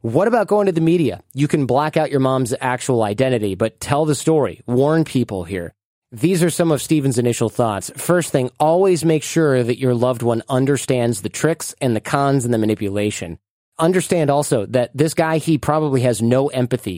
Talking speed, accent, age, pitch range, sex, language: 200 wpm, American, 30-49, 115-145 Hz, male, English